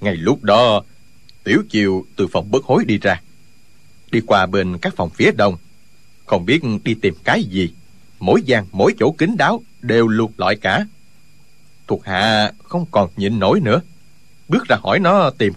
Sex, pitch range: male, 100-145 Hz